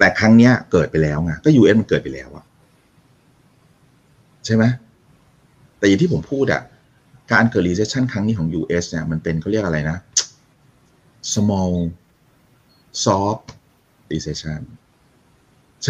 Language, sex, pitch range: Thai, male, 85-130 Hz